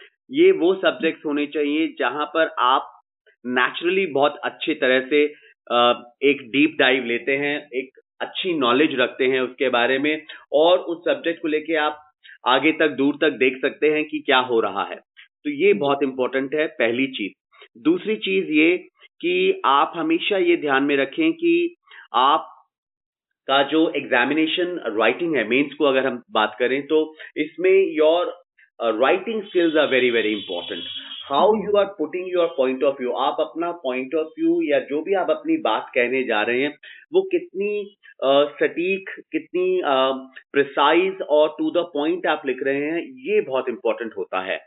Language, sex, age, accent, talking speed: Hindi, male, 30-49, native, 160 wpm